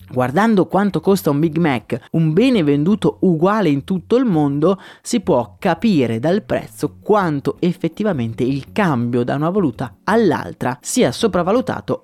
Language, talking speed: Italian, 145 wpm